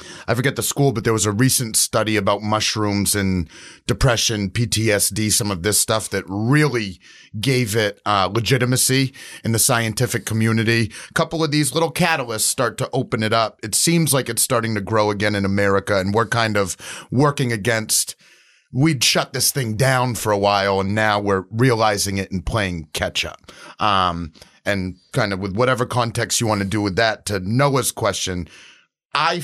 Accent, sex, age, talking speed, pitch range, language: American, male, 30-49, 180 wpm, 100-130 Hz, English